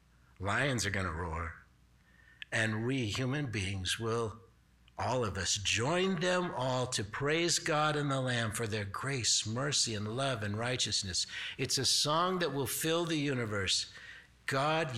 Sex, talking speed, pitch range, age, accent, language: male, 155 wpm, 105-150 Hz, 60-79, American, English